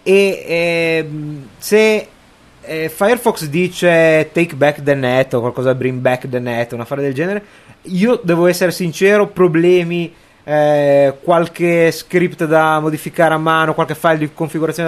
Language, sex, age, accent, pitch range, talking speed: Italian, male, 30-49, native, 145-170 Hz, 145 wpm